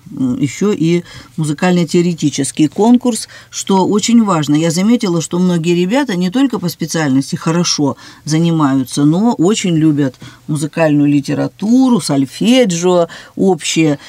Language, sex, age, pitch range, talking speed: Russian, female, 50-69, 150-200 Hz, 105 wpm